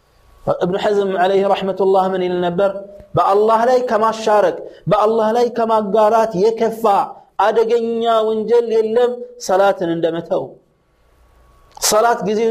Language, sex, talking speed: Amharic, male, 115 wpm